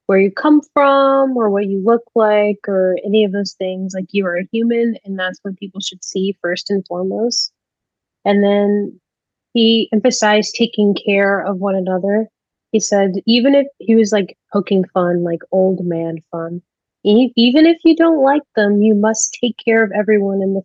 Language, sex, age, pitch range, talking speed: English, female, 20-39, 190-235 Hz, 185 wpm